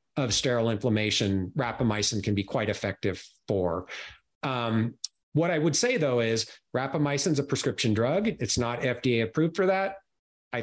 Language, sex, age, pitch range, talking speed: English, male, 40-59, 115-150 Hz, 160 wpm